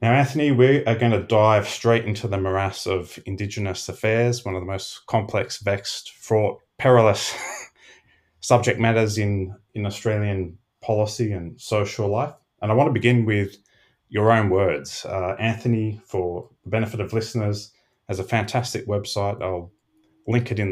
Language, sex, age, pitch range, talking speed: English, male, 20-39, 100-120 Hz, 160 wpm